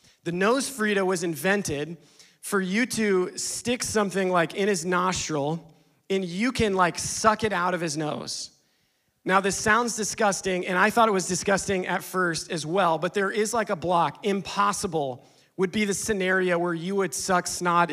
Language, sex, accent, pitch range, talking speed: English, male, American, 170-200 Hz, 180 wpm